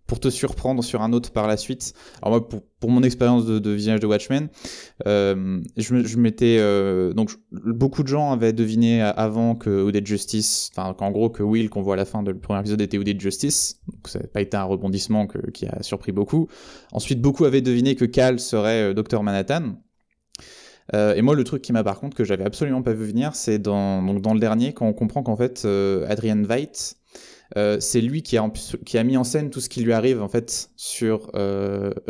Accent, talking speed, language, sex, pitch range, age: French, 225 wpm, French, male, 105-125 Hz, 20-39